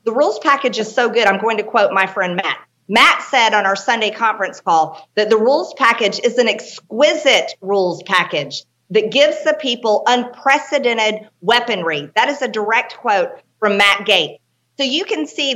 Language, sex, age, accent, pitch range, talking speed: English, female, 50-69, American, 205-265 Hz, 180 wpm